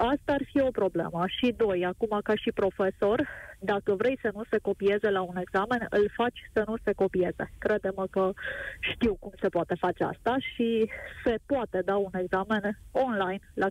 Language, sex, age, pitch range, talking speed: Romanian, female, 20-39, 200-245 Hz, 185 wpm